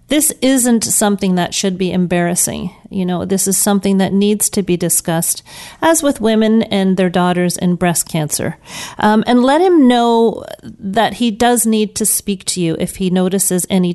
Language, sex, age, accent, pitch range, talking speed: English, female, 40-59, American, 180-225 Hz, 185 wpm